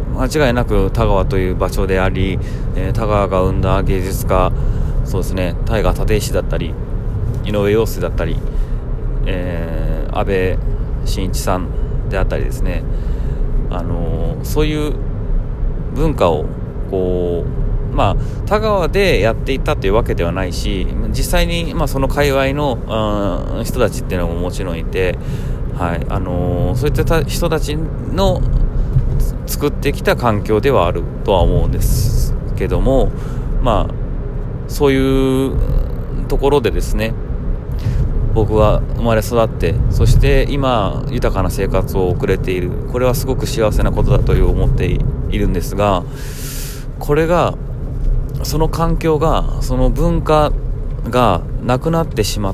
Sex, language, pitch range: male, Japanese, 95-135 Hz